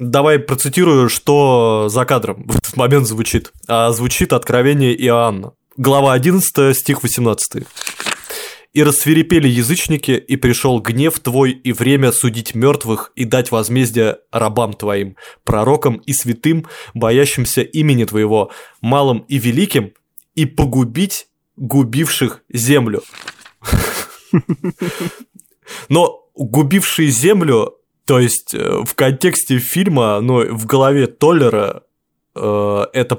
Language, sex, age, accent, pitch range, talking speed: Russian, male, 20-39, native, 115-145 Hz, 110 wpm